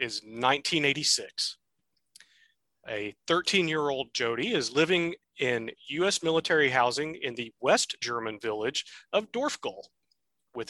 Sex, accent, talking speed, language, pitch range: male, American, 120 wpm, English, 120-155 Hz